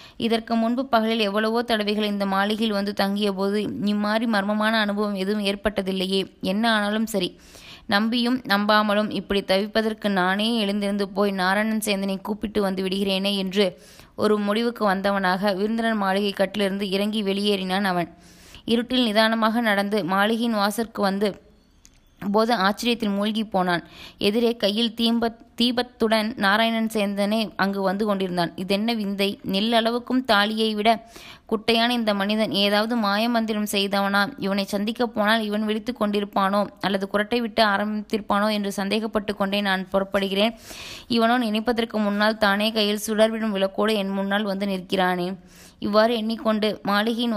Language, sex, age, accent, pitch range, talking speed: Tamil, female, 20-39, native, 195-220 Hz, 125 wpm